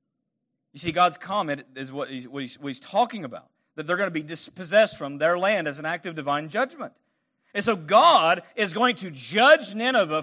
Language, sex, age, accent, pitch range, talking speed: English, male, 40-59, American, 135-180 Hz, 195 wpm